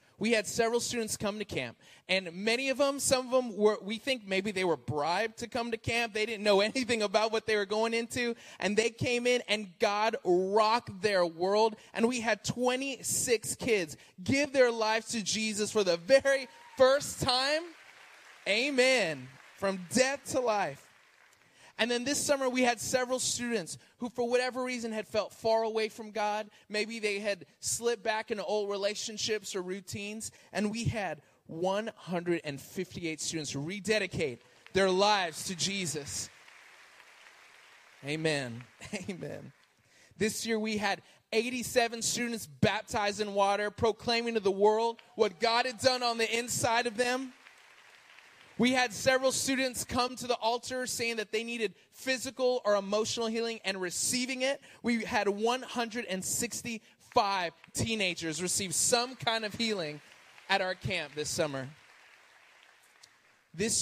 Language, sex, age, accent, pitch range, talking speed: English, male, 20-39, American, 190-240 Hz, 150 wpm